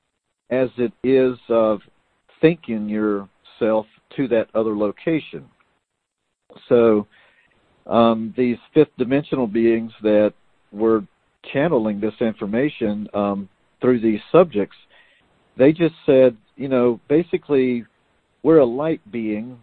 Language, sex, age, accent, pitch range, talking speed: English, male, 50-69, American, 105-130 Hz, 105 wpm